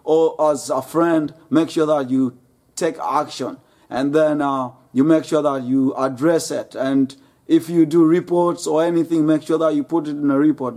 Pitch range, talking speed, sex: 145-170 Hz, 200 wpm, male